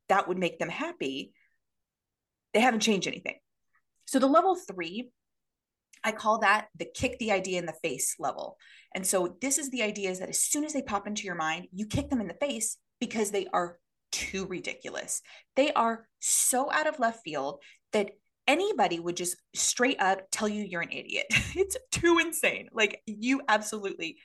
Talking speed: 185 wpm